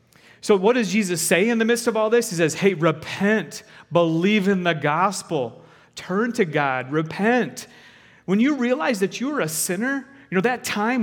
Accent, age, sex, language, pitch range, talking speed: American, 30-49, male, English, 145-215 Hz, 185 wpm